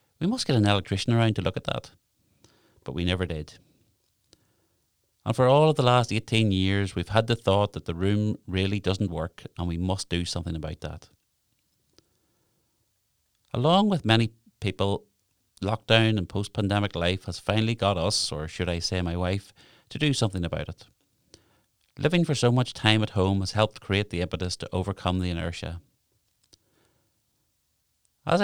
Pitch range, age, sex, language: 90-110 Hz, 30-49, male, English